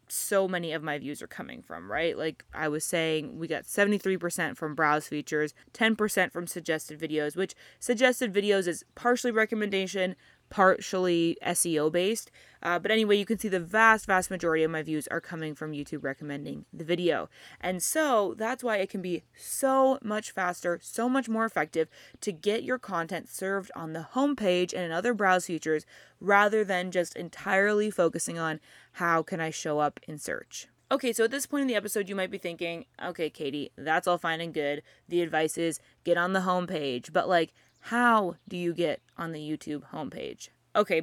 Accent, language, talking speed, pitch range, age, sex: American, English, 190 wpm, 160-210 Hz, 20-39, female